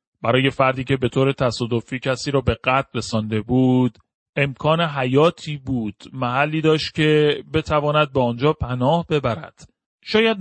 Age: 40-59